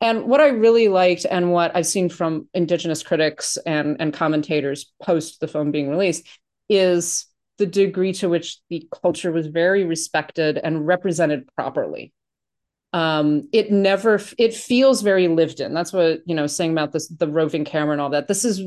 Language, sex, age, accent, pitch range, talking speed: English, female, 30-49, American, 155-185 Hz, 180 wpm